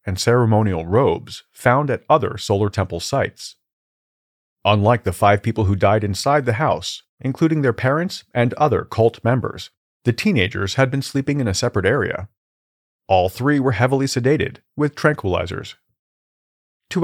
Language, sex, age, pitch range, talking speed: English, male, 40-59, 100-140 Hz, 150 wpm